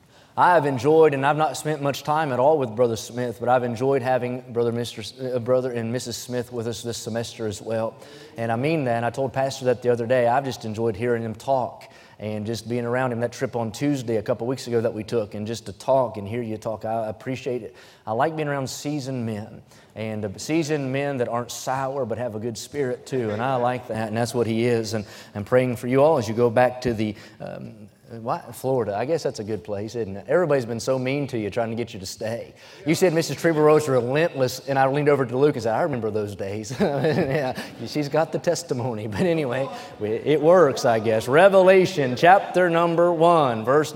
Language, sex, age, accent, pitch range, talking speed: English, male, 30-49, American, 115-140 Hz, 230 wpm